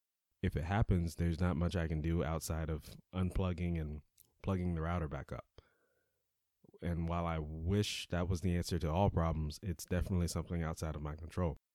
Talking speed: 185 wpm